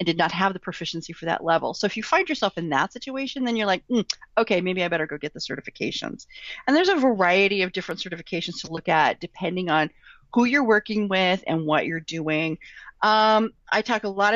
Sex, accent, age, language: female, American, 40-59, English